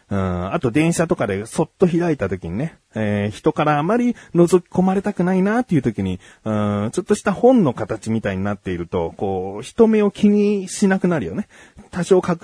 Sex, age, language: male, 30-49, Japanese